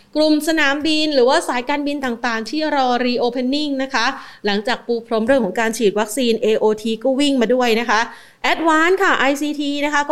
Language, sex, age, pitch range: Thai, female, 30-49, 220-275 Hz